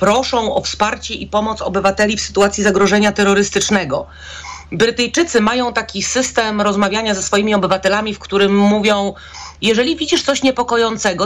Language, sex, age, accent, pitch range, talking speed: Polish, female, 40-59, native, 200-240 Hz, 135 wpm